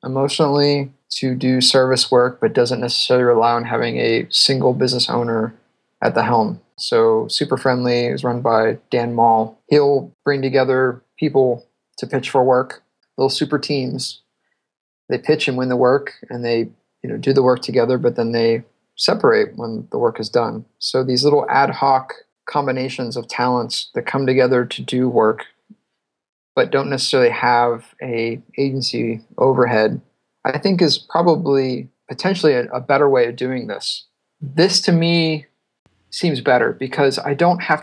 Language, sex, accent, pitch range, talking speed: English, male, American, 120-145 Hz, 160 wpm